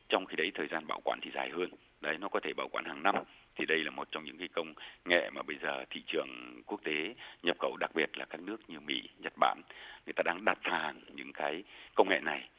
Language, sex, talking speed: Vietnamese, male, 260 wpm